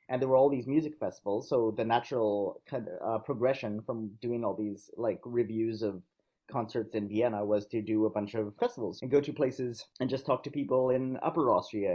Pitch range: 115-150 Hz